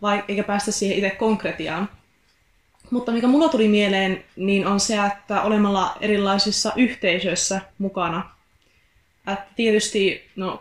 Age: 20-39